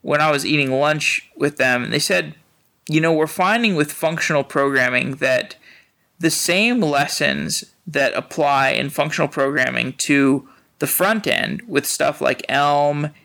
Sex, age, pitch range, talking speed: male, 20-39, 140-165 Hz, 150 wpm